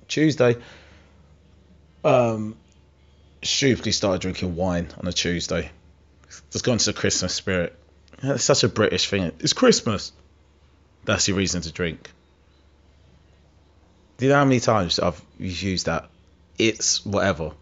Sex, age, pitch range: male, 30-49, 80-110 Hz